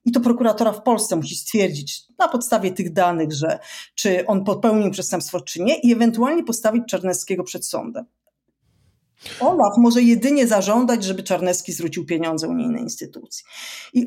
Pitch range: 185-245 Hz